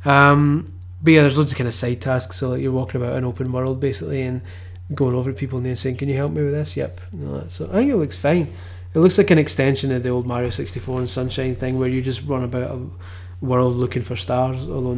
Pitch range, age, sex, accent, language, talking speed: 95-130 Hz, 20-39, male, British, English, 255 wpm